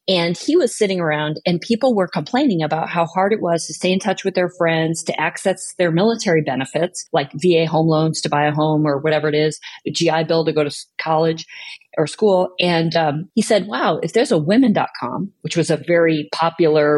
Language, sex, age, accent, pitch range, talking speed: English, female, 40-59, American, 160-200 Hz, 215 wpm